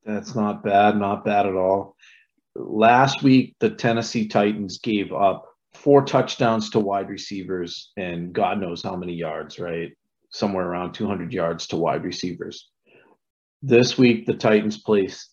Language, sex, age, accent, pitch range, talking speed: English, male, 40-59, American, 95-115 Hz, 150 wpm